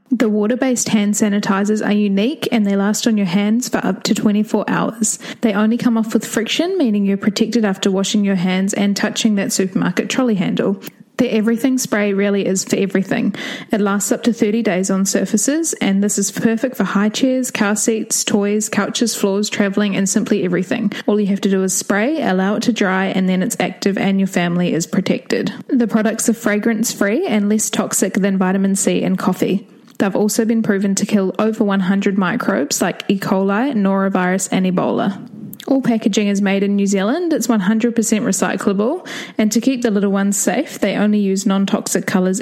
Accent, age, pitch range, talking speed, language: Australian, 10-29, 195-230 Hz, 190 wpm, English